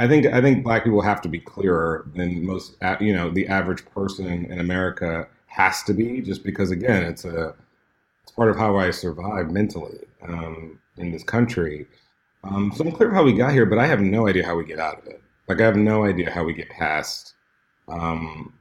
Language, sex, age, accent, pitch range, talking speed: English, male, 40-59, American, 85-105 Hz, 215 wpm